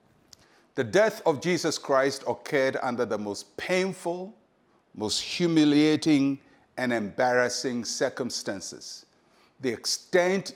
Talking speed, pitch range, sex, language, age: 95 wpm, 130-180 Hz, male, English, 60-79